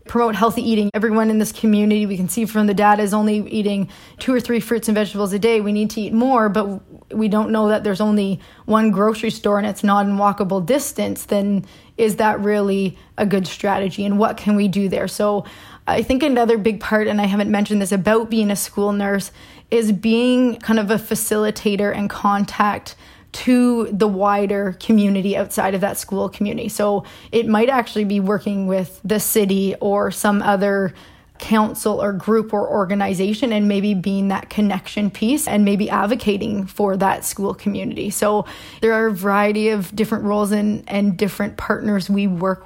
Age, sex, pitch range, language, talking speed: 20-39, female, 200-220 Hz, English, 190 wpm